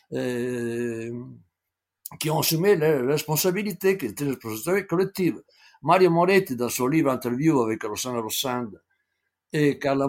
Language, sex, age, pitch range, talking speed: French, male, 60-79, 120-160 Hz, 130 wpm